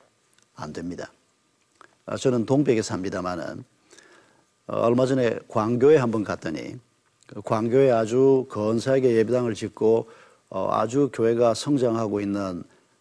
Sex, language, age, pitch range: male, Korean, 50-69, 115-145 Hz